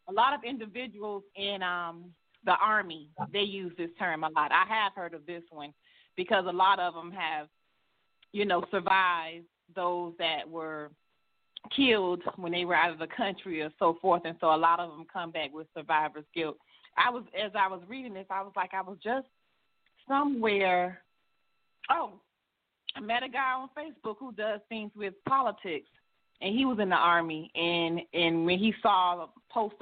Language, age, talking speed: English, 30-49, 185 wpm